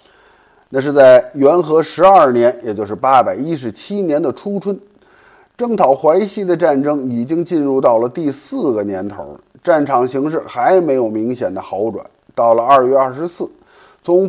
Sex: male